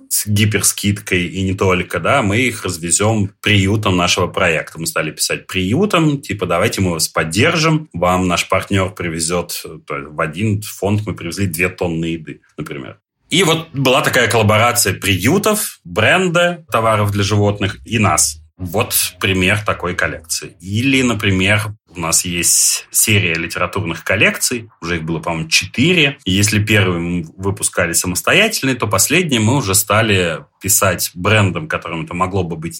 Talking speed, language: 145 wpm, Russian